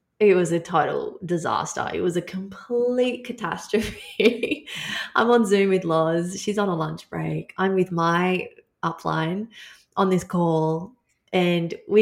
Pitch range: 165-210 Hz